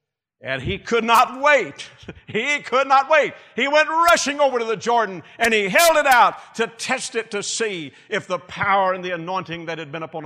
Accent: American